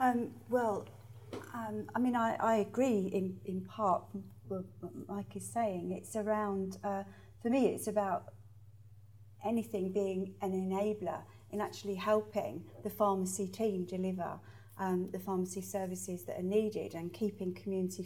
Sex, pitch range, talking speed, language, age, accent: female, 165-205 Hz, 145 wpm, English, 40-59, British